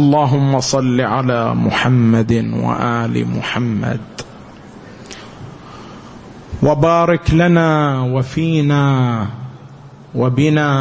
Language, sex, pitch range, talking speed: Arabic, male, 125-145 Hz, 55 wpm